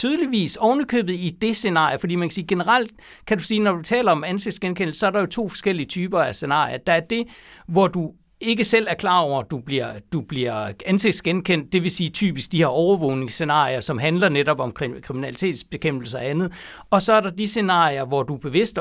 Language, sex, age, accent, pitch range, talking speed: Danish, male, 60-79, native, 140-185 Hz, 215 wpm